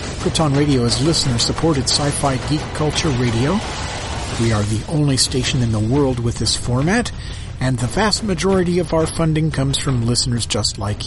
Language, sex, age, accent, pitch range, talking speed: English, male, 40-59, American, 115-150 Hz, 170 wpm